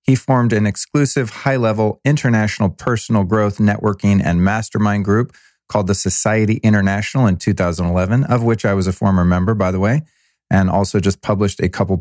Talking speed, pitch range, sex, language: 170 wpm, 95-110 Hz, male, English